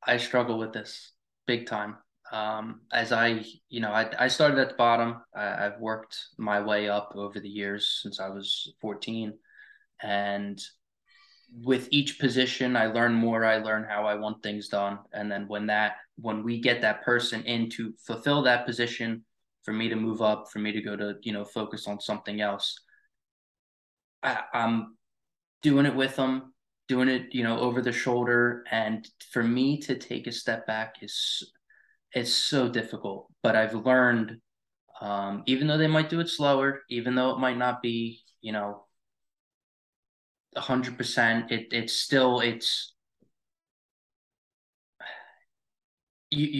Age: 20-39